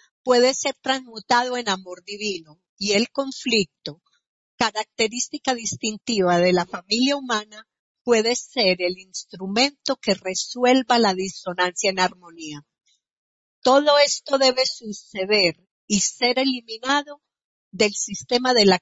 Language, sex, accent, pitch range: Spanish, female, American, 190-240 Hz